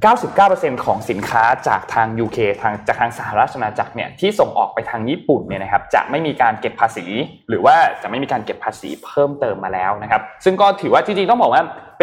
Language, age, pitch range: Thai, 20-39, 110-170 Hz